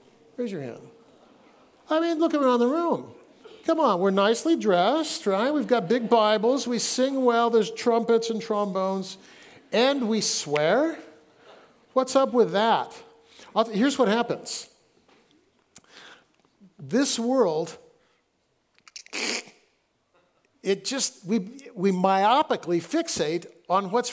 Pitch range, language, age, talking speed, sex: 200-270 Hz, English, 60-79, 115 wpm, male